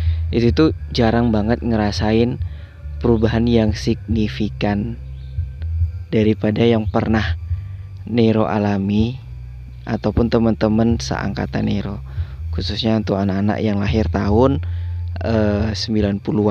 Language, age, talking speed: Indonesian, 20-39, 85 wpm